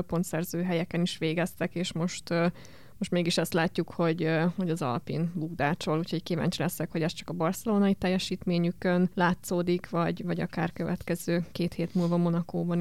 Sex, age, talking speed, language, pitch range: female, 20-39, 155 wpm, Hungarian, 170-185 Hz